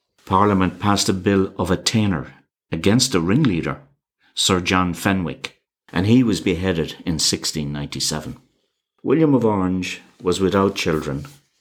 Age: 60-79